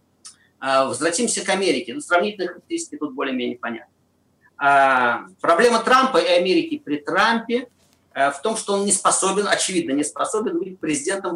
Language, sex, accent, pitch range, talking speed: Russian, male, native, 165-275 Hz, 135 wpm